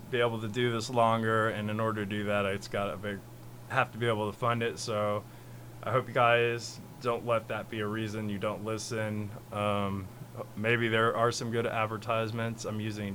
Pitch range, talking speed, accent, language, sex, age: 105-120 Hz, 210 wpm, American, English, male, 20-39